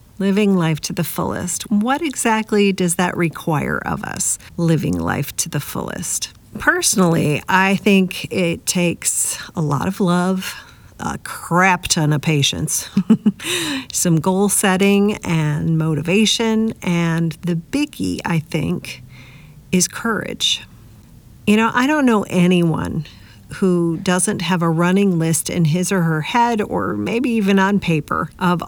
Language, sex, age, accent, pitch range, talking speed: English, female, 50-69, American, 160-200 Hz, 140 wpm